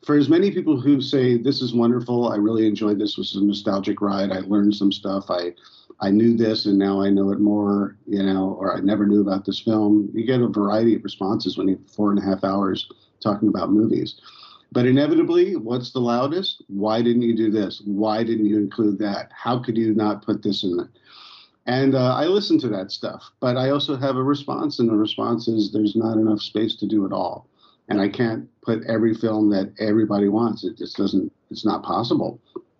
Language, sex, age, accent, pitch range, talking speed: English, male, 50-69, American, 100-115 Hz, 220 wpm